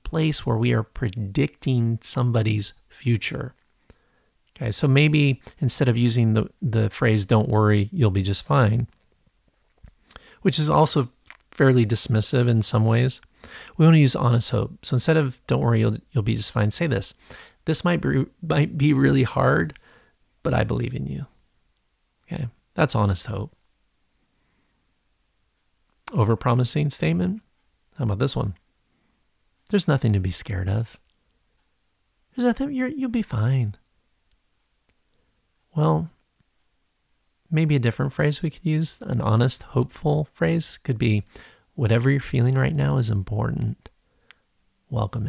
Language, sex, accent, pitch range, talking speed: English, male, American, 110-150 Hz, 140 wpm